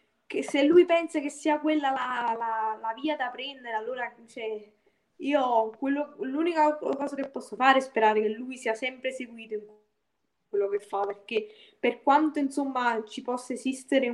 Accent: native